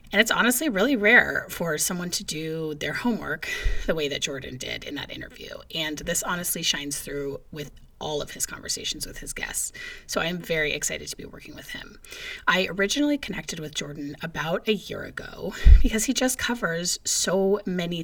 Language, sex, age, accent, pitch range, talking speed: English, female, 30-49, American, 160-220 Hz, 185 wpm